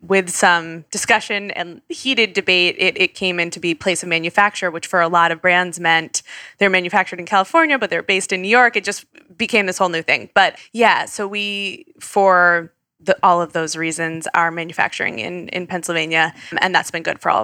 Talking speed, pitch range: 205 wpm, 170-195 Hz